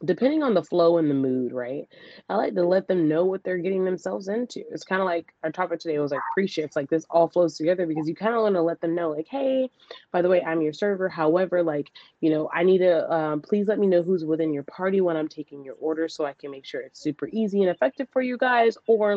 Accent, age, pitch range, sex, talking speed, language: American, 20-39, 155-185 Hz, female, 270 wpm, English